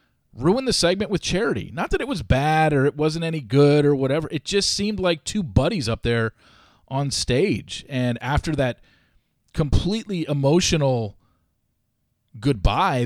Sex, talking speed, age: male, 150 wpm, 40-59